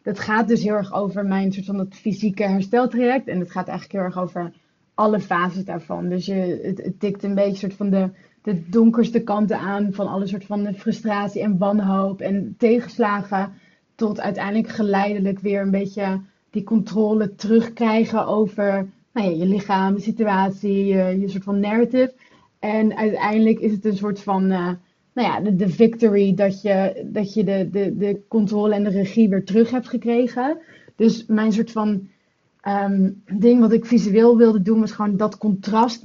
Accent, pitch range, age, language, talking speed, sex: Dutch, 195-225 Hz, 20-39, Dutch, 180 wpm, female